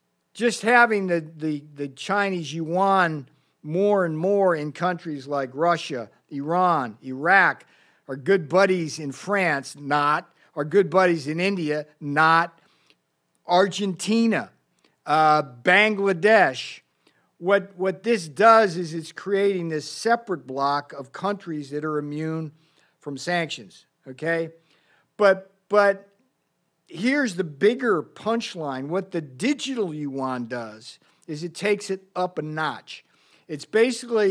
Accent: American